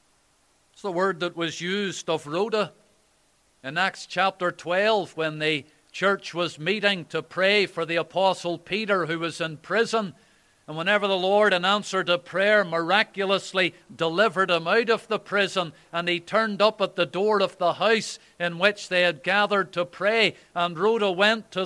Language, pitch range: English, 175-205 Hz